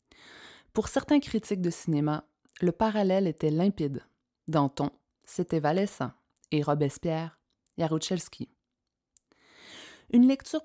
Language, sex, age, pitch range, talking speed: French, female, 20-39, 160-215 Hz, 95 wpm